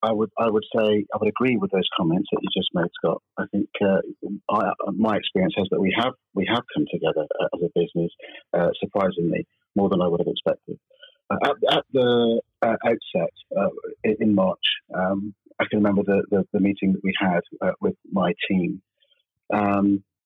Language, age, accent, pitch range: English, 40-59, British, 95-110 Hz